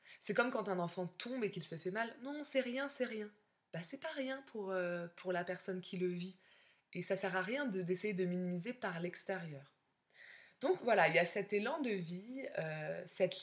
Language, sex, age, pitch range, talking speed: French, female, 20-39, 170-215 Hz, 230 wpm